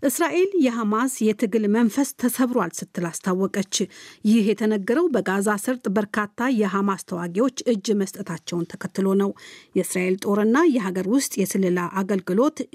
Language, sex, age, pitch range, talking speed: Amharic, female, 50-69, 185-245 Hz, 110 wpm